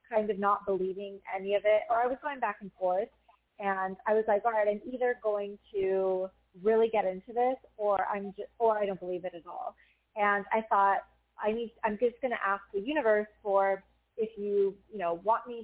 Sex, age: female, 30-49